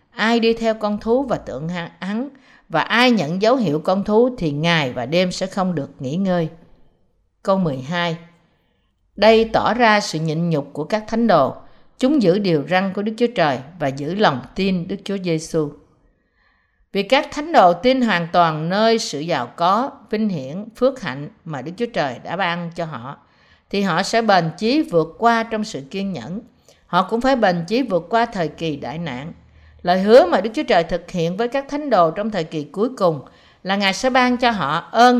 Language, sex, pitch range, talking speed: Vietnamese, female, 160-225 Hz, 205 wpm